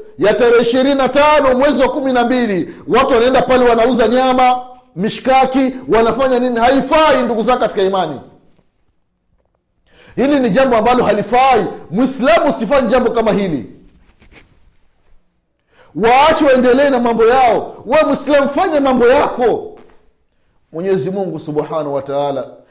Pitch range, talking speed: 210-275 Hz, 115 wpm